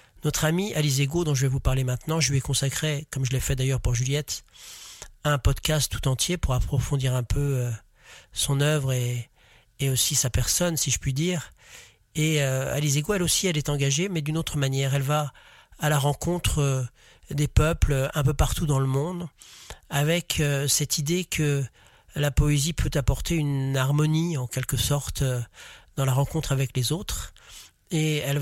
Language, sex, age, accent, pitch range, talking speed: French, male, 40-59, French, 130-150 Hz, 175 wpm